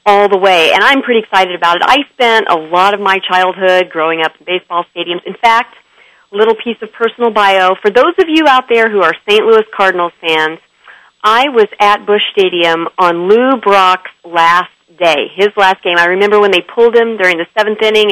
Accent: American